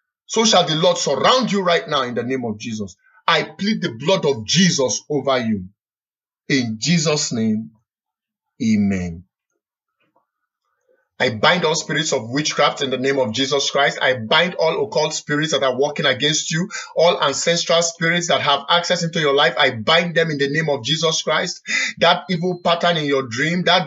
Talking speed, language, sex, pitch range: 180 wpm, English, male, 150-205 Hz